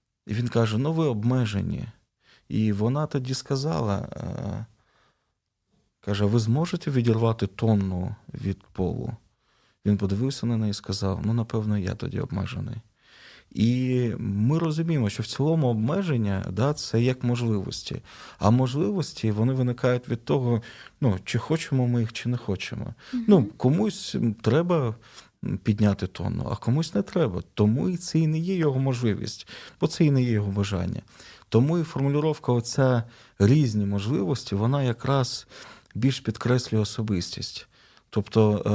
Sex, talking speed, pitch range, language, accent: male, 135 wpm, 100-125 Hz, Ukrainian, native